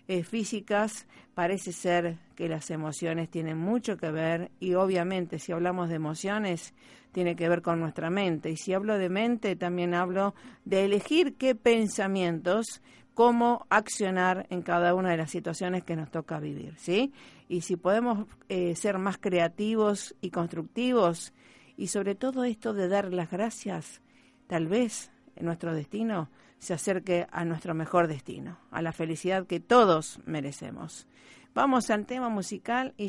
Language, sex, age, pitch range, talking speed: Spanish, female, 50-69, 175-220 Hz, 155 wpm